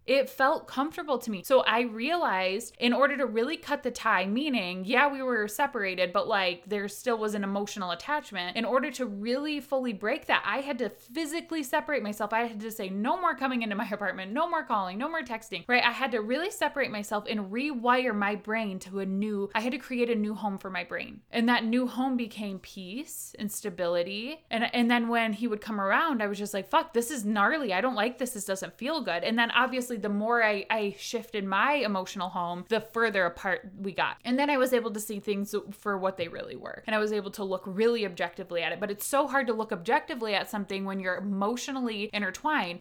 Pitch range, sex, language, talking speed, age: 205-265 Hz, female, English, 230 wpm, 20-39